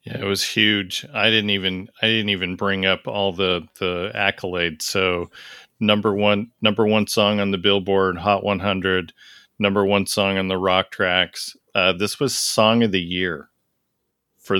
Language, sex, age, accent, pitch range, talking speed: English, male, 40-59, American, 95-110 Hz, 175 wpm